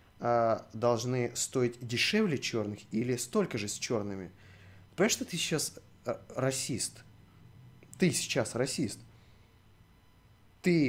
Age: 20-39